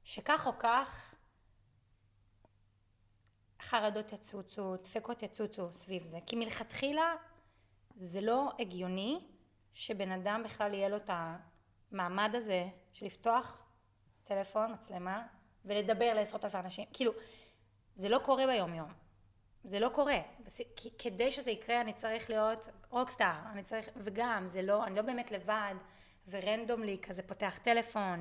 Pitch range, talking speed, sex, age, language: 185-235 Hz, 130 wpm, female, 20-39, Hebrew